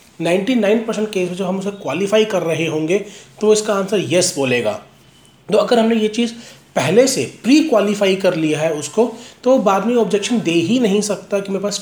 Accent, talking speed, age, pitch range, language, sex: native, 200 wpm, 40-59, 165-215 Hz, Hindi, male